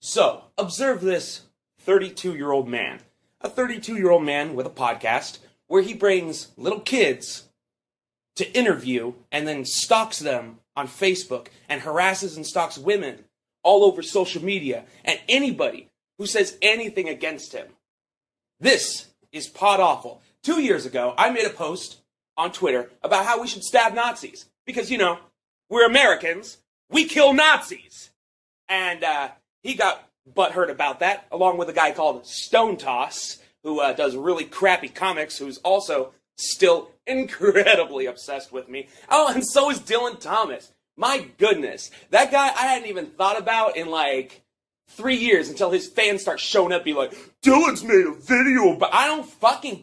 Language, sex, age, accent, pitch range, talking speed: English, male, 30-49, American, 170-260 Hz, 155 wpm